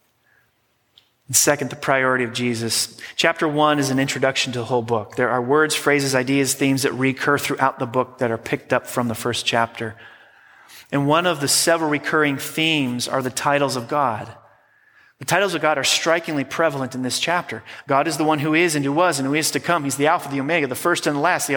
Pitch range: 130-205 Hz